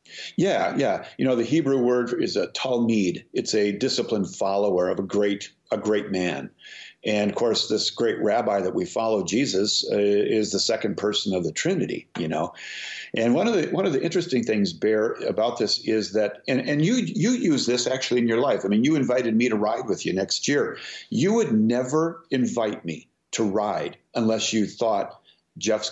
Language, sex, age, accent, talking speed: English, male, 50-69, American, 200 wpm